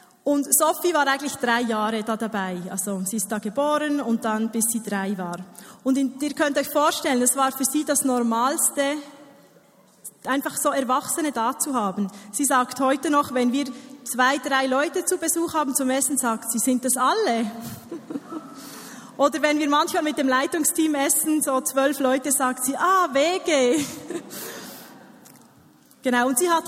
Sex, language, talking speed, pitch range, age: female, German, 170 wpm, 240-290 Hz, 20-39